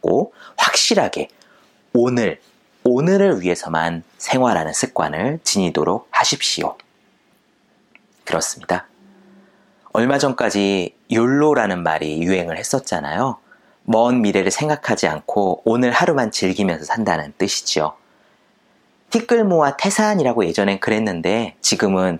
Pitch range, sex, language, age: 100-150 Hz, male, Korean, 30-49